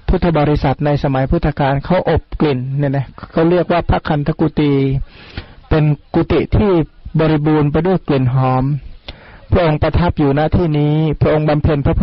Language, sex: Thai, male